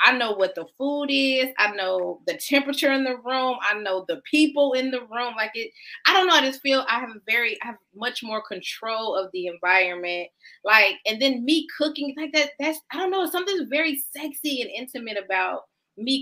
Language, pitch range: English, 205-290 Hz